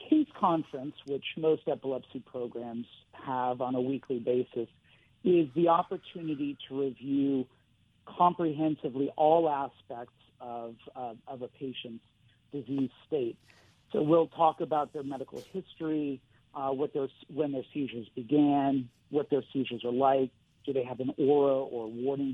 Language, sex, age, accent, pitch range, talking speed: English, male, 50-69, American, 120-150 Hz, 140 wpm